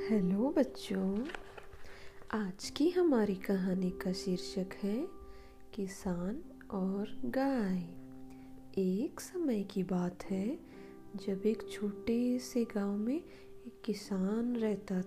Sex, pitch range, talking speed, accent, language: female, 190-250 Hz, 105 wpm, native, Hindi